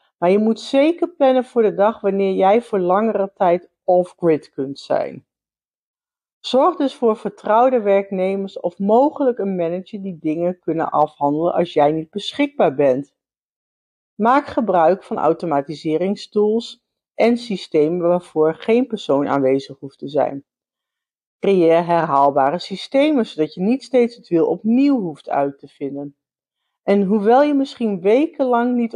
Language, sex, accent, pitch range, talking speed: Dutch, female, Dutch, 175-245 Hz, 140 wpm